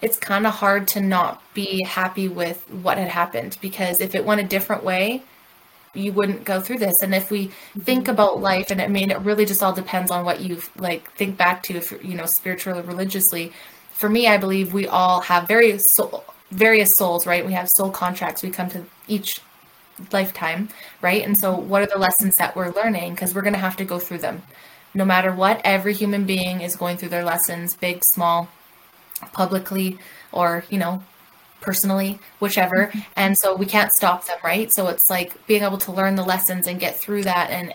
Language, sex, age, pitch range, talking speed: English, female, 20-39, 180-205 Hz, 210 wpm